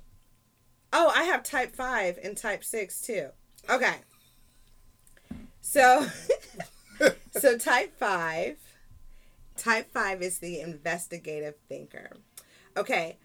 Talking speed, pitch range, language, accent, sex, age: 95 wpm, 170-210 Hz, English, American, female, 30-49